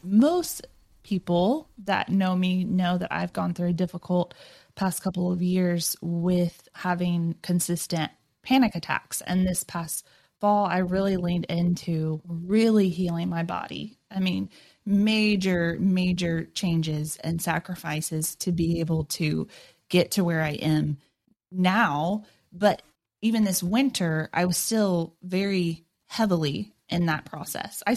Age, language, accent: 20-39, English, American